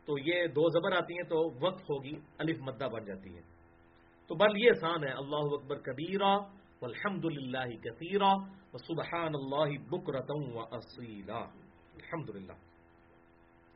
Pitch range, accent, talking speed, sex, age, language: 120-195 Hz, Indian, 125 wpm, male, 50-69, English